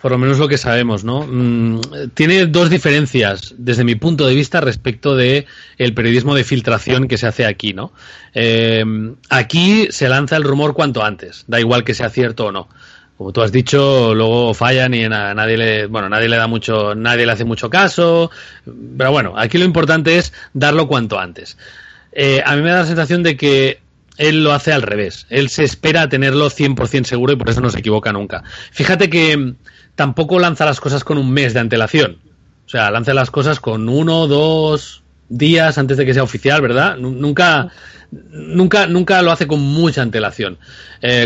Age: 30-49